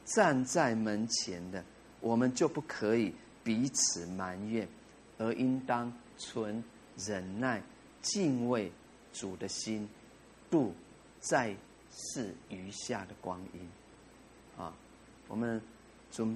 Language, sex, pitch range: Chinese, male, 100-125 Hz